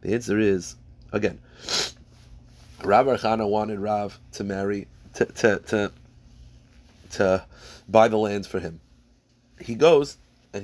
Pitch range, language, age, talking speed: 95-110 Hz, English, 30-49, 120 wpm